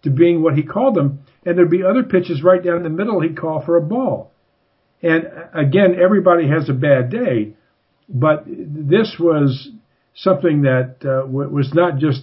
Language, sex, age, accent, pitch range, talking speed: English, male, 50-69, American, 130-170 Hz, 180 wpm